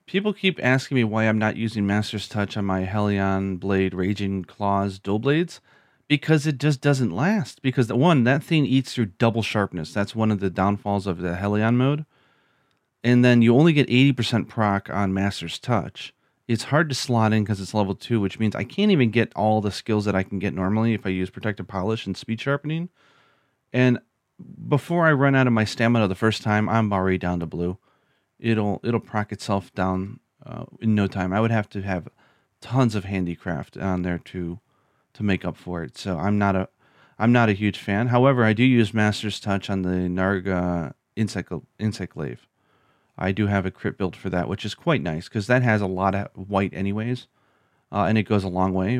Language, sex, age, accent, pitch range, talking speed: English, male, 30-49, American, 95-125 Hz, 210 wpm